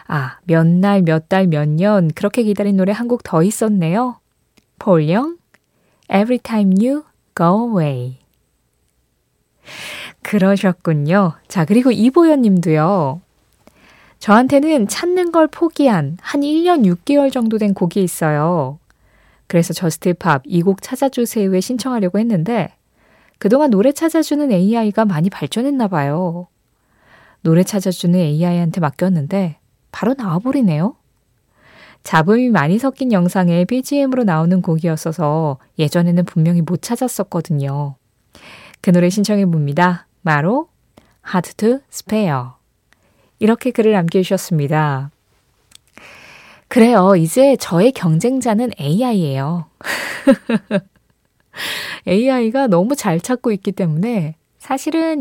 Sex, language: female, Korean